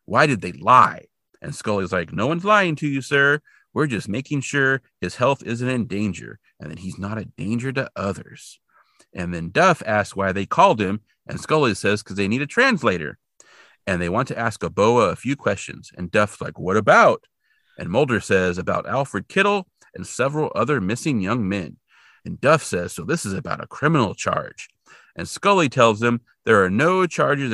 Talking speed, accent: 195 wpm, American